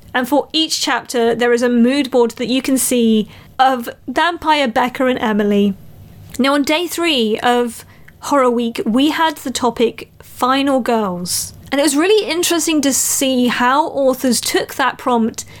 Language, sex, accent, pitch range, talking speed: English, female, British, 240-300 Hz, 165 wpm